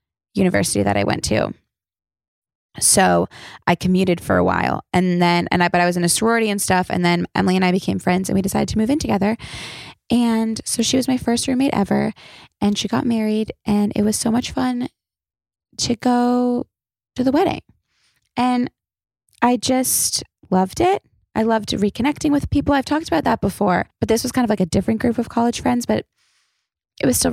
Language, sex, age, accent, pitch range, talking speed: English, female, 20-39, American, 180-240 Hz, 200 wpm